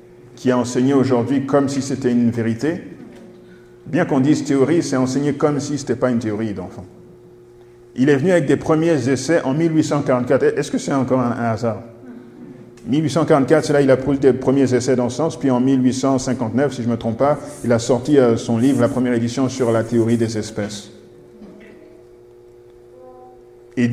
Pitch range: 115-140 Hz